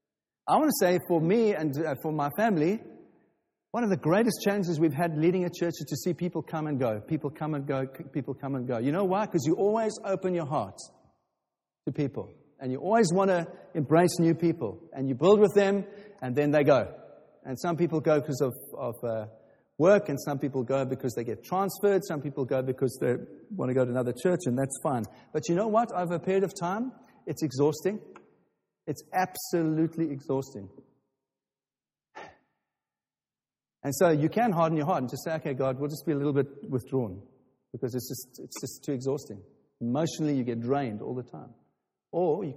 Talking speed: 200 wpm